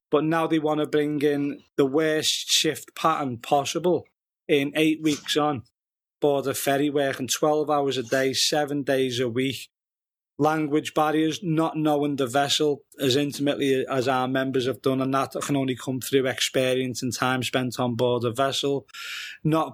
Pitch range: 130-150 Hz